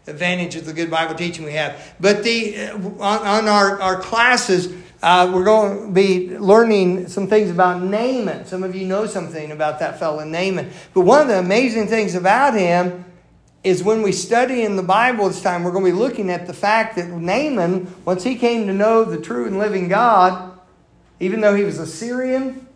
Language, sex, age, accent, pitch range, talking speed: English, male, 50-69, American, 170-205 Hz, 205 wpm